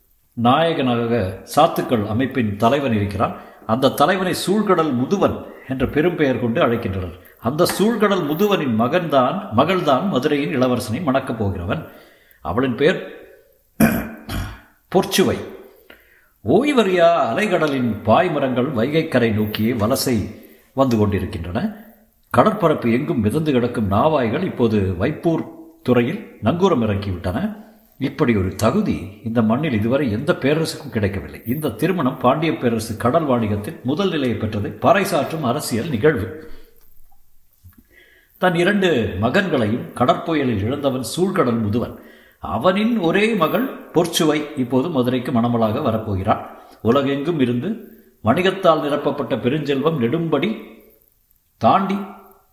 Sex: male